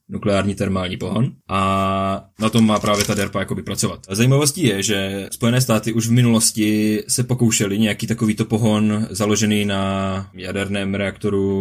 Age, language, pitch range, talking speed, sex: 20-39, Czech, 100-115 Hz, 150 wpm, male